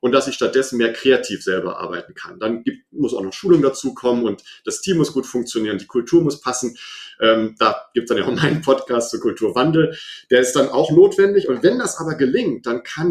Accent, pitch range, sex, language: German, 115-170 Hz, male, German